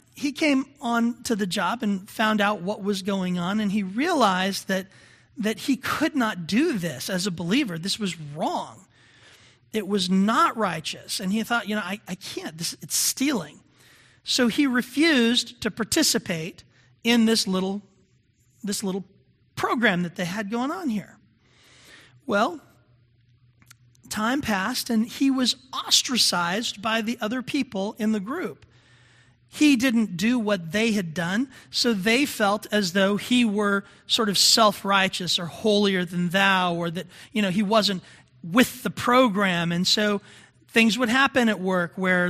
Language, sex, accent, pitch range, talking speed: English, male, American, 180-235 Hz, 155 wpm